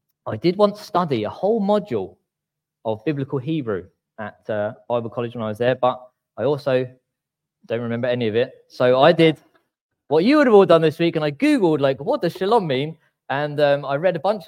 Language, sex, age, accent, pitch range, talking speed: English, male, 20-39, British, 125-180 Hz, 210 wpm